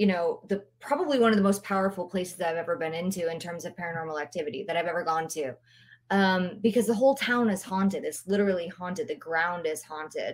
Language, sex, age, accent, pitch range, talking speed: English, female, 20-39, American, 170-210 Hz, 220 wpm